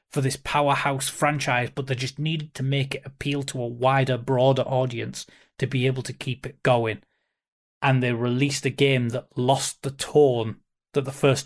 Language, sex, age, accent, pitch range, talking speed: English, male, 20-39, British, 130-155 Hz, 190 wpm